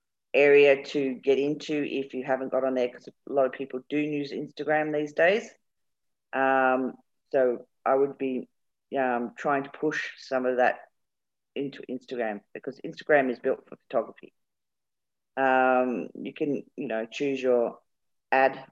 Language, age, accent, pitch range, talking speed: English, 40-59, Australian, 125-140 Hz, 155 wpm